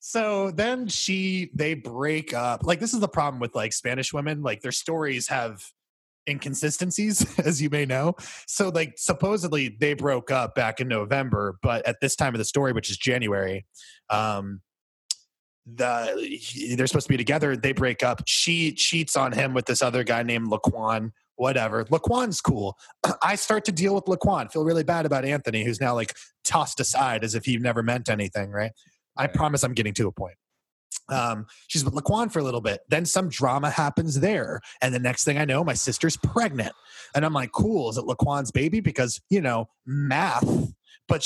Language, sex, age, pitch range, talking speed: English, male, 20-39, 120-160 Hz, 190 wpm